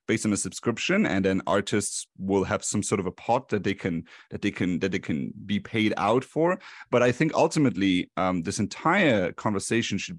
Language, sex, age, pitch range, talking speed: English, male, 30-49, 100-130 Hz, 210 wpm